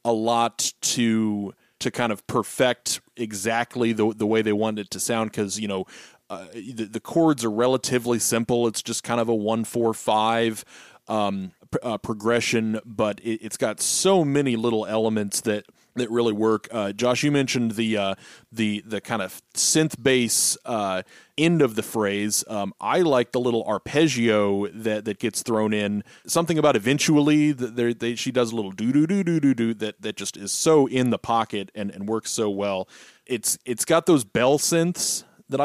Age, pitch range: 30-49, 105-125 Hz